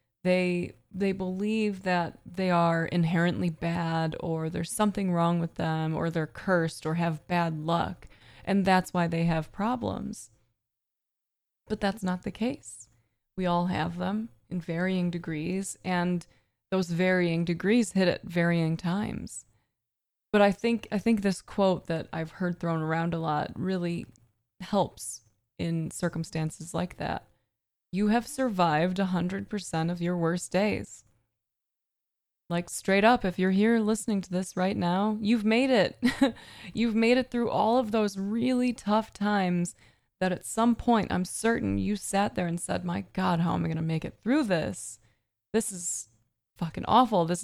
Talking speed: 160 wpm